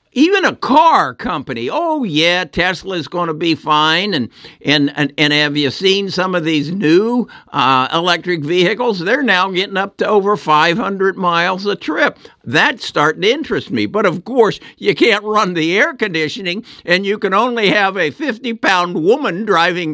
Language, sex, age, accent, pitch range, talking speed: English, male, 60-79, American, 160-240 Hz, 180 wpm